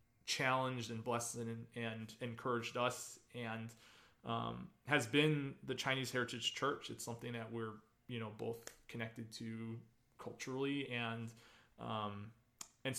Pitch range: 115-130 Hz